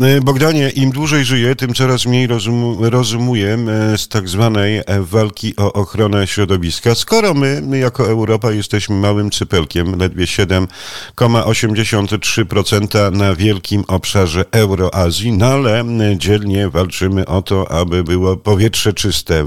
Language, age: Polish, 50-69